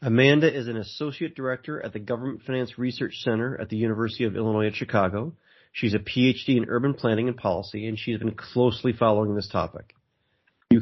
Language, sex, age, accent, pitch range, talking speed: English, male, 30-49, American, 100-120 Hz, 190 wpm